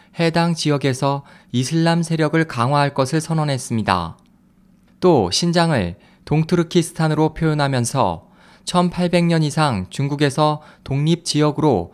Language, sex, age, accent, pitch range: Korean, male, 20-39, native, 140-175 Hz